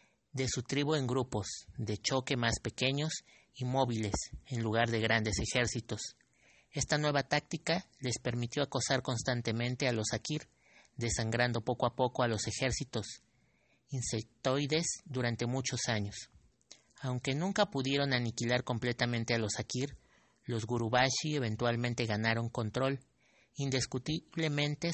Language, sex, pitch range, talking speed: English, male, 115-135 Hz, 125 wpm